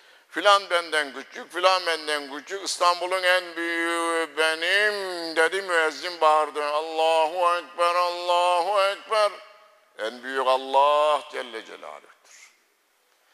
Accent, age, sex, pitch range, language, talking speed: native, 60-79, male, 145-185 Hz, Turkish, 100 wpm